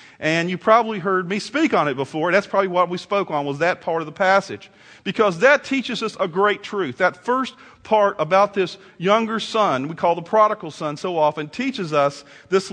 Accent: American